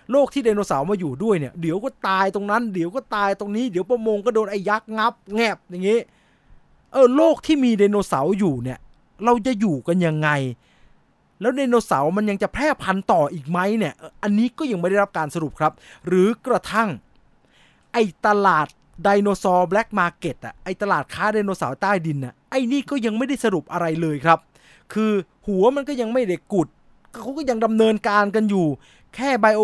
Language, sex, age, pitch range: English, male, 20-39, 175-230 Hz